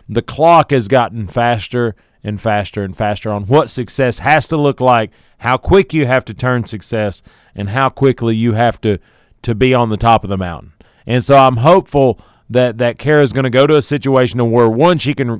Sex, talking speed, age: male, 210 wpm, 40-59